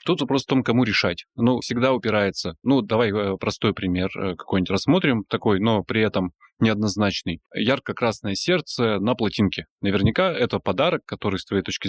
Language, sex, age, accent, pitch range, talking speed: Russian, male, 20-39, native, 95-115 Hz, 155 wpm